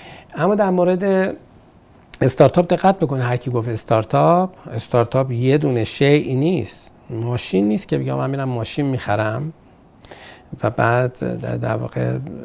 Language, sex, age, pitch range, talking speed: Persian, male, 50-69, 110-130 Hz, 125 wpm